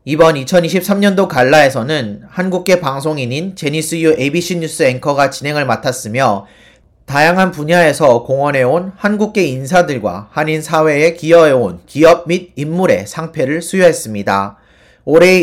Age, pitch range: 40-59, 150-185 Hz